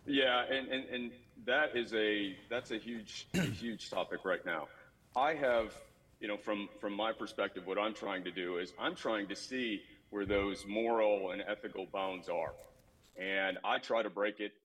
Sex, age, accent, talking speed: male, 40-59, American, 185 wpm